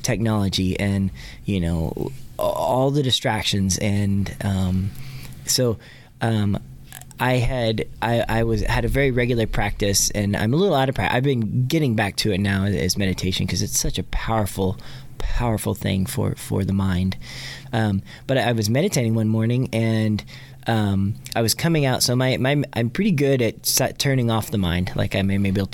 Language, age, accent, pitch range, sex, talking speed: English, 20-39, American, 105-130 Hz, male, 180 wpm